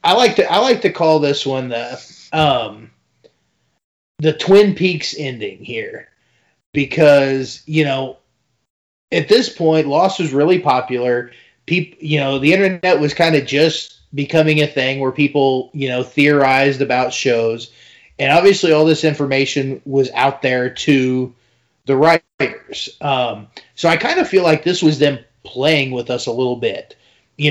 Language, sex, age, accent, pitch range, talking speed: English, male, 30-49, American, 130-155 Hz, 160 wpm